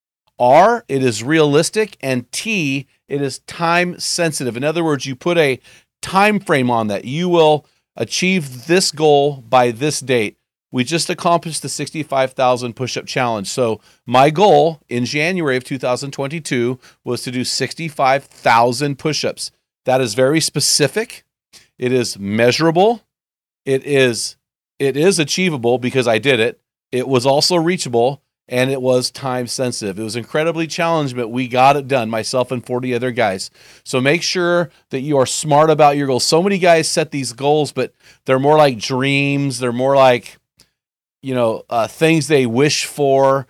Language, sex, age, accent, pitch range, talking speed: English, male, 40-59, American, 125-160 Hz, 160 wpm